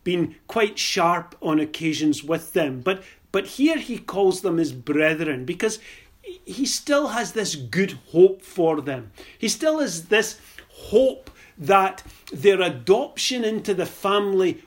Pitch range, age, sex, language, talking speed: 150-210 Hz, 40-59, male, English, 145 wpm